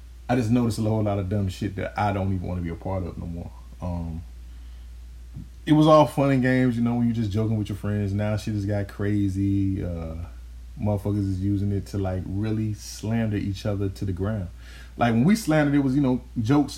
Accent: American